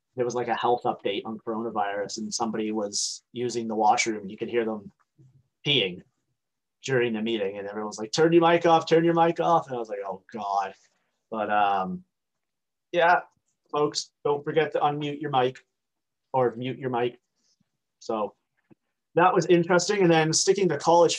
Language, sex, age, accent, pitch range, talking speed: English, male, 30-49, American, 115-140 Hz, 180 wpm